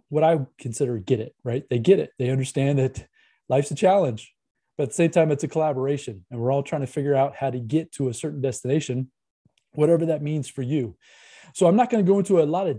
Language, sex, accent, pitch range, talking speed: English, male, American, 125-155 Hz, 245 wpm